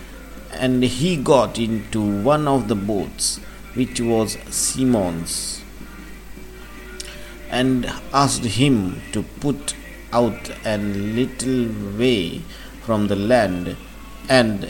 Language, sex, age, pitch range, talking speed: English, male, 50-69, 105-130 Hz, 100 wpm